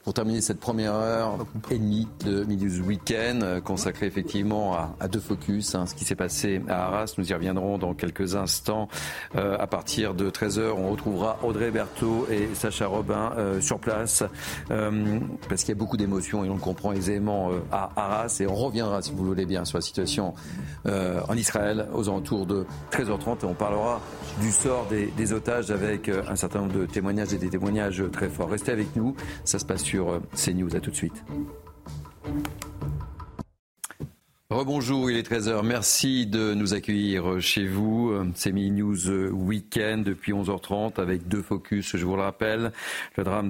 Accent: French